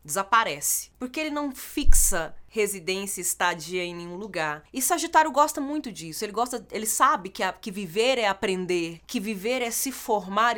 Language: Portuguese